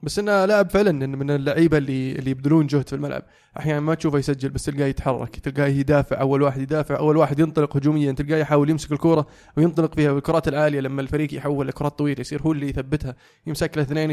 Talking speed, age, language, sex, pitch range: 205 wpm, 20-39, Arabic, male, 140-160 Hz